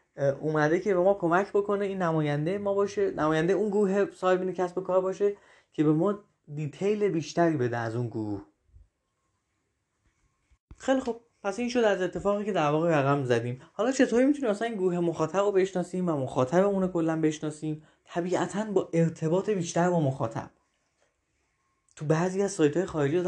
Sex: male